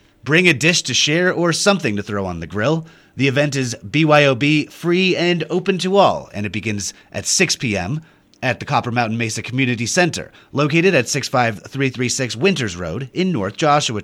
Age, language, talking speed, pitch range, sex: 30-49, English, 175 wpm, 110-165 Hz, male